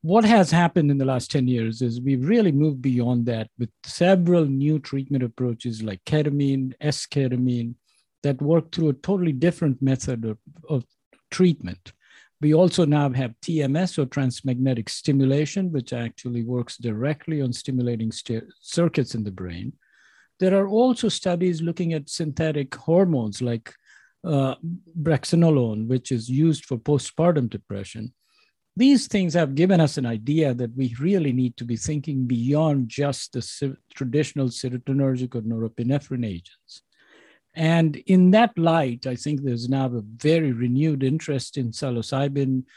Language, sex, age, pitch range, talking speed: English, male, 50-69, 125-160 Hz, 145 wpm